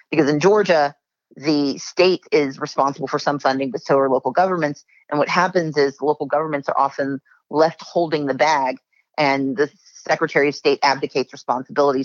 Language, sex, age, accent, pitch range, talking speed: English, female, 40-59, American, 140-165 Hz, 170 wpm